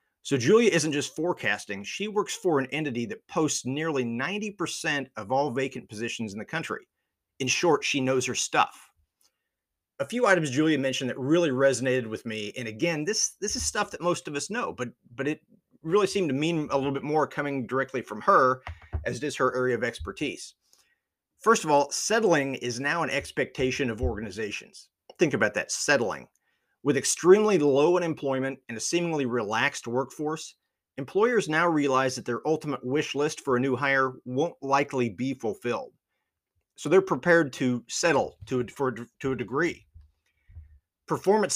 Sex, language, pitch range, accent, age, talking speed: male, English, 125-155 Hz, American, 40-59, 170 wpm